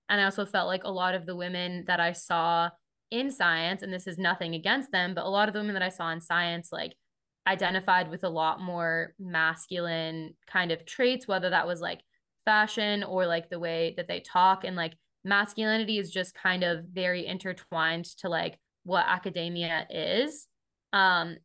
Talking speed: 195 wpm